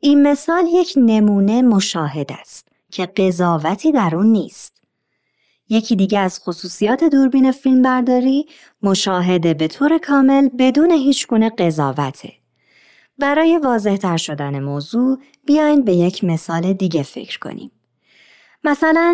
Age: 30-49